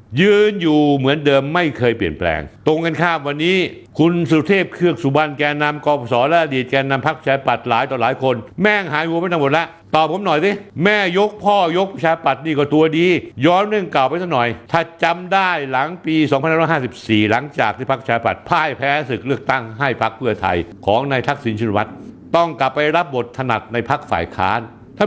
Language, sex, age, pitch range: Thai, male, 60-79, 120-165 Hz